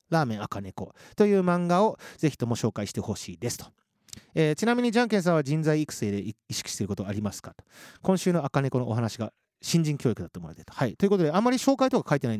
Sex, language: male, Japanese